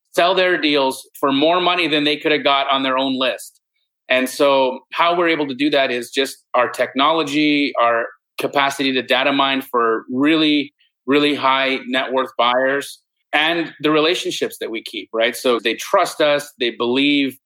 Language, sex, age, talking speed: English, male, 30-49, 180 wpm